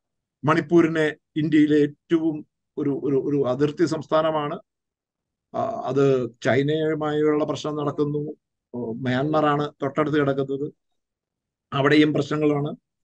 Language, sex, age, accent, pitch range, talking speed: Malayalam, male, 50-69, native, 150-200 Hz, 75 wpm